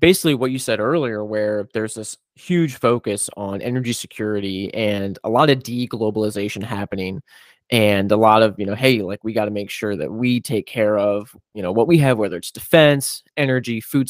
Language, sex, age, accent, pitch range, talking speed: English, male, 20-39, American, 105-130 Hz, 200 wpm